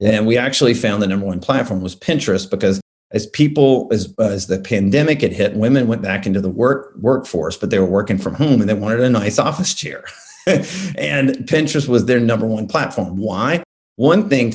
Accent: American